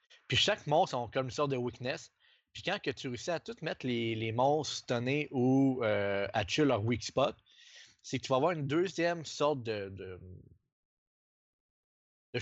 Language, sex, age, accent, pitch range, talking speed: French, male, 20-39, Canadian, 115-135 Hz, 190 wpm